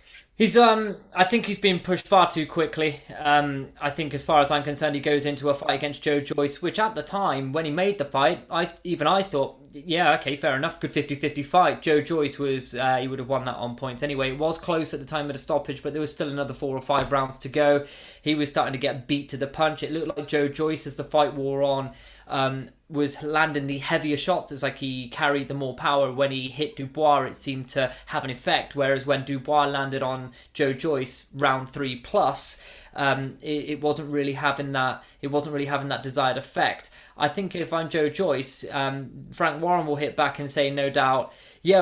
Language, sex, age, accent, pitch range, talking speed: English, male, 20-39, British, 140-160 Hz, 230 wpm